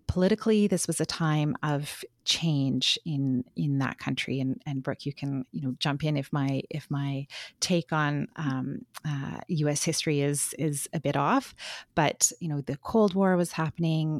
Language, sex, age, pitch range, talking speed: English, female, 30-49, 135-165 Hz, 180 wpm